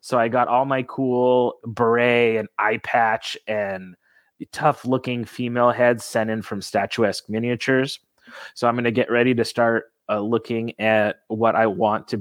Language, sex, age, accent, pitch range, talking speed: English, male, 30-49, American, 110-135 Hz, 170 wpm